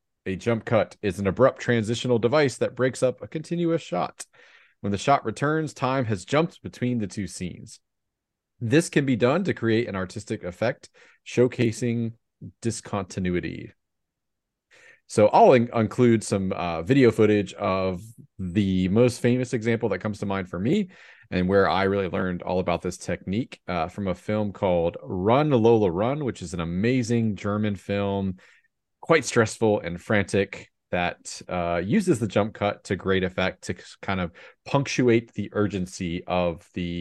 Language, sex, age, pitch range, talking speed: English, male, 30-49, 90-120 Hz, 160 wpm